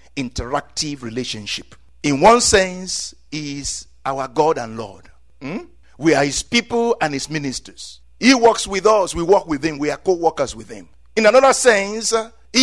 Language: English